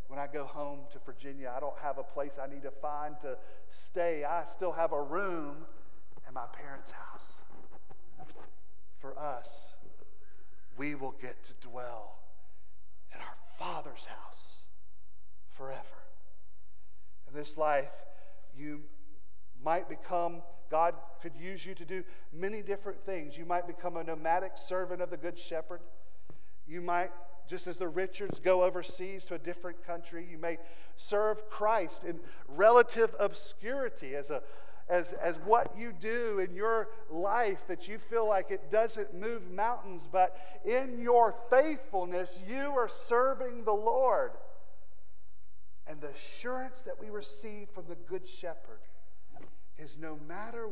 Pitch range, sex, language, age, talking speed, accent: 140-190 Hz, male, English, 40-59, 145 wpm, American